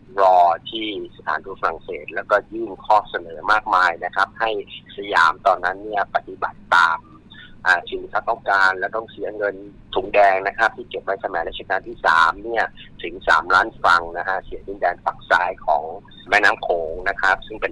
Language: Thai